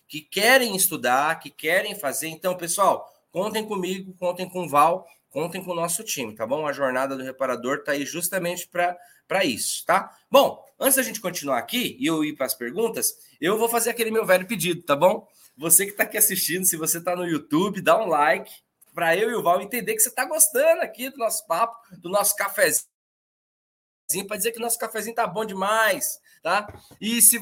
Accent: Brazilian